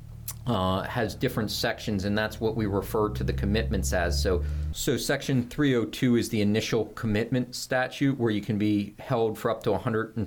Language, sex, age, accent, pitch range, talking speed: English, male, 40-59, American, 100-120 Hz, 205 wpm